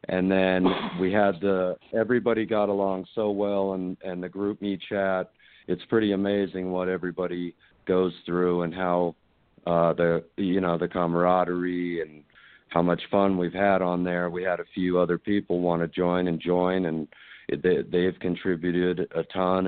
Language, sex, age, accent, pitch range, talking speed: English, male, 50-69, American, 85-95 Hz, 175 wpm